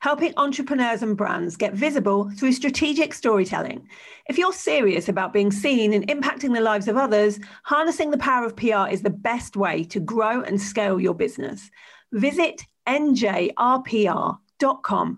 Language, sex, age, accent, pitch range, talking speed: English, female, 40-59, British, 205-270 Hz, 150 wpm